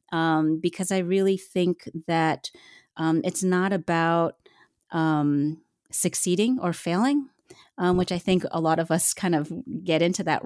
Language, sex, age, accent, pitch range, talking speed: English, female, 30-49, American, 155-190 Hz, 155 wpm